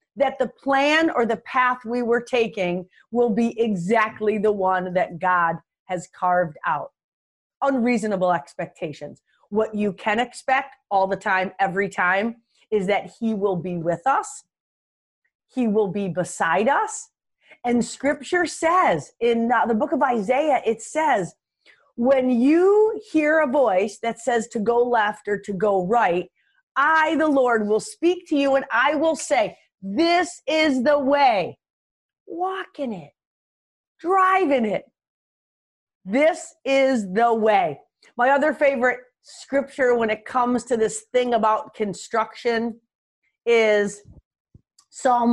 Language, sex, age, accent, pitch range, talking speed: English, female, 30-49, American, 205-275 Hz, 135 wpm